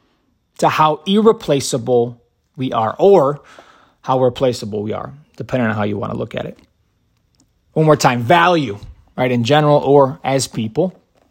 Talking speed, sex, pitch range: 155 wpm, male, 110-150 Hz